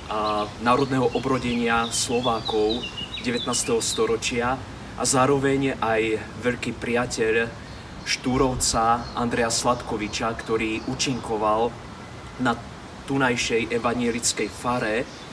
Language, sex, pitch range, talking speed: Slovak, male, 110-130 Hz, 80 wpm